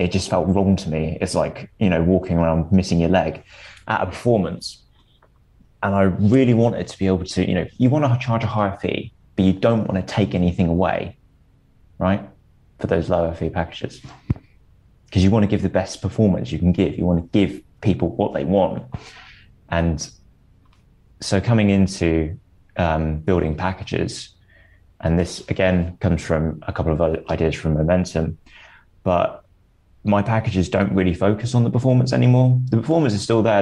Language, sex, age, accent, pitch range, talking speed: English, male, 20-39, British, 85-100 Hz, 180 wpm